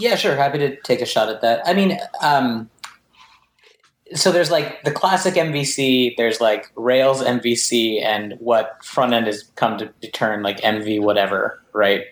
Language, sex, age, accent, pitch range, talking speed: English, male, 20-39, American, 110-140 Hz, 170 wpm